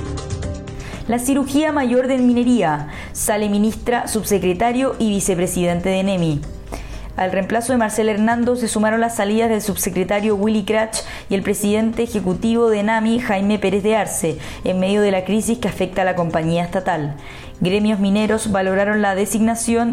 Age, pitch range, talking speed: 20-39, 185-225 Hz, 155 wpm